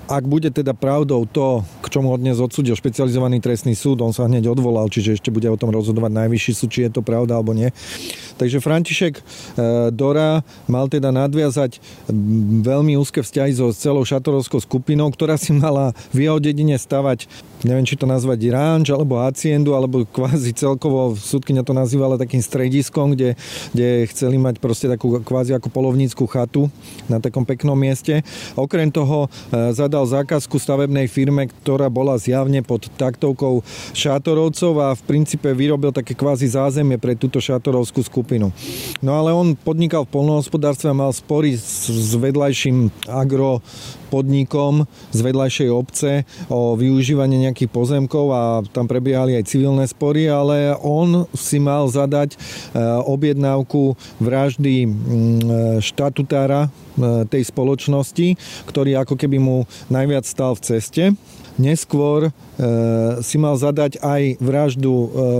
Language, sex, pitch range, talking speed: Slovak, male, 125-145 Hz, 140 wpm